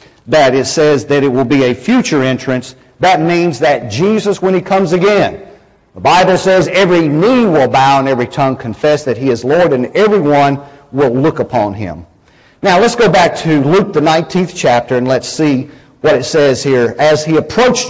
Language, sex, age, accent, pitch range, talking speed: English, male, 50-69, American, 130-190 Hz, 195 wpm